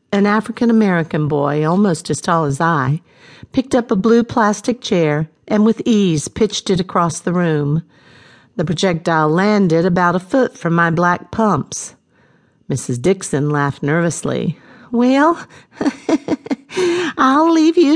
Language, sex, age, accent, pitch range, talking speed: English, female, 50-69, American, 155-220 Hz, 135 wpm